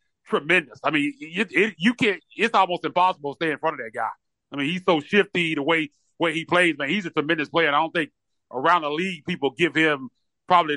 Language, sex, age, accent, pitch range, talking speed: English, male, 30-49, American, 145-175 Hz, 240 wpm